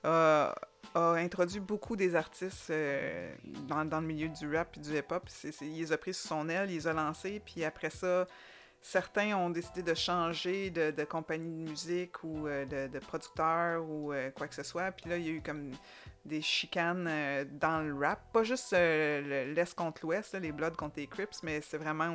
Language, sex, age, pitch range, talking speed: French, female, 30-49, 150-180 Hz, 220 wpm